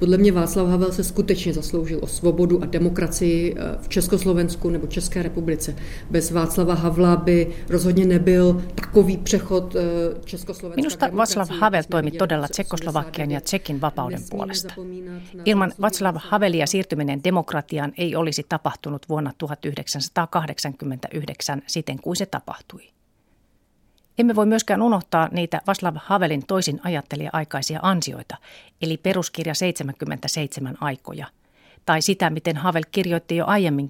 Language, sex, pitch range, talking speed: Finnish, female, 155-190 Hz, 125 wpm